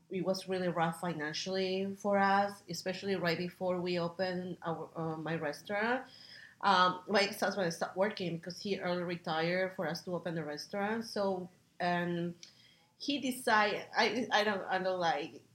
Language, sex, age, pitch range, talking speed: English, female, 30-49, 175-210 Hz, 160 wpm